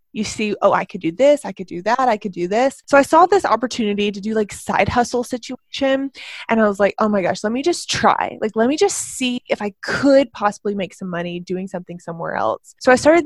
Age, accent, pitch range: 20-39, American, 195-245 Hz